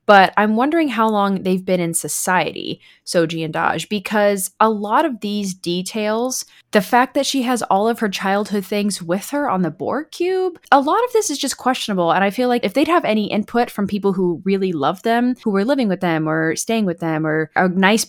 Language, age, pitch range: English, 20-39, 180-245 Hz